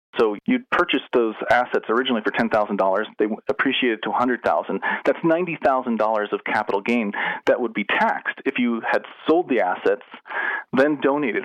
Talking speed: 150 wpm